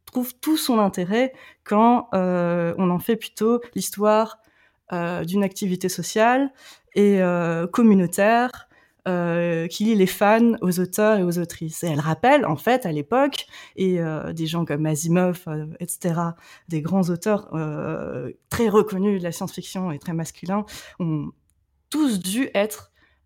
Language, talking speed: French, 150 wpm